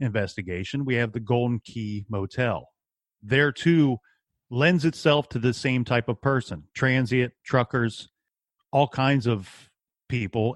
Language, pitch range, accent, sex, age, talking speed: English, 115-145 Hz, American, male, 40-59, 130 wpm